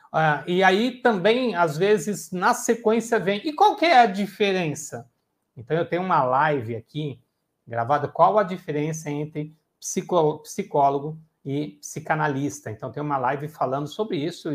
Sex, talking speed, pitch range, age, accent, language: male, 155 wpm, 145-215 Hz, 60-79, Brazilian, Portuguese